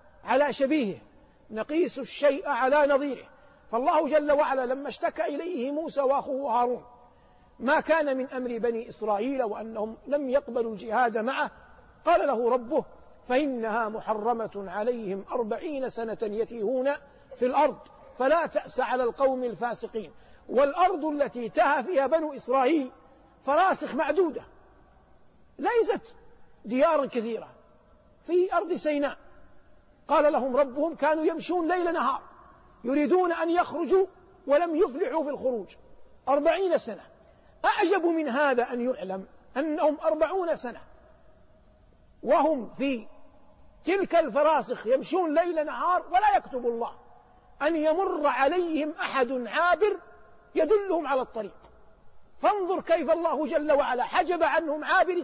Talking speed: 115 wpm